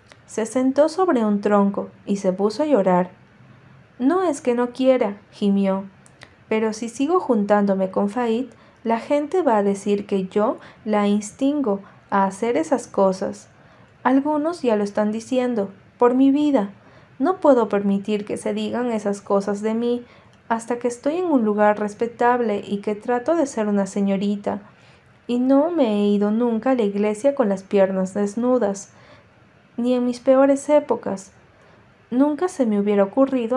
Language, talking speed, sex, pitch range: Spanish, 160 wpm, female, 200-260 Hz